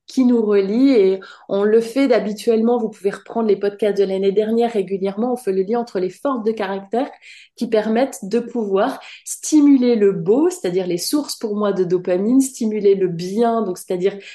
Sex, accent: female, French